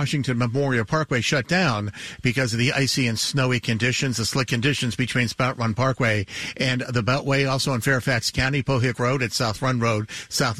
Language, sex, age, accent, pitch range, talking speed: English, male, 50-69, American, 115-140 Hz, 195 wpm